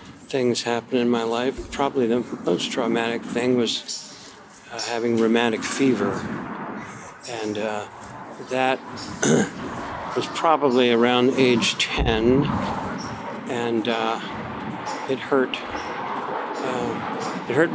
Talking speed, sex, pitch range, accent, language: 100 wpm, male, 115-130 Hz, American, English